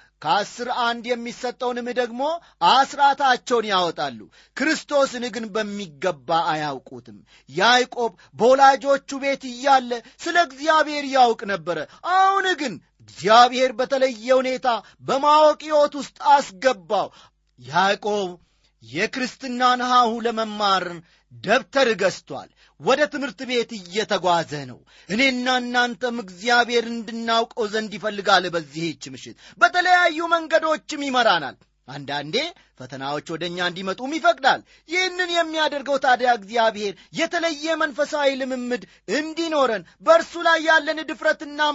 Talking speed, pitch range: 95 wpm, 180-285 Hz